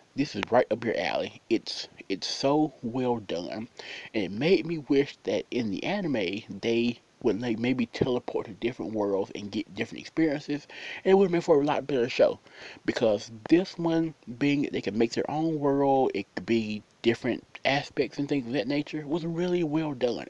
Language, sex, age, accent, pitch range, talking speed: English, male, 30-49, American, 120-160 Hz, 200 wpm